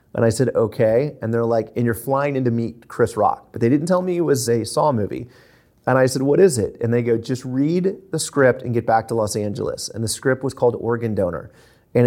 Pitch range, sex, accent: 115-140 Hz, male, American